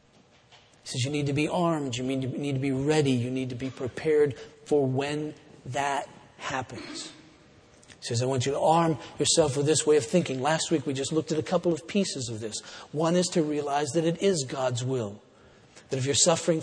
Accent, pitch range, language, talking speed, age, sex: American, 135-165 Hz, English, 215 wpm, 50-69, male